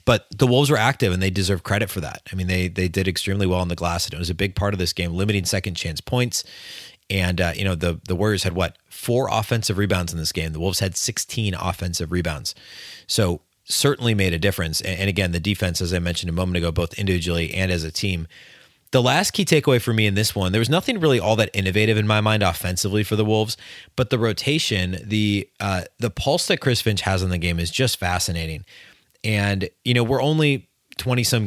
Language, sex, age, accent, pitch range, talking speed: English, male, 30-49, American, 95-120 Hz, 235 wpm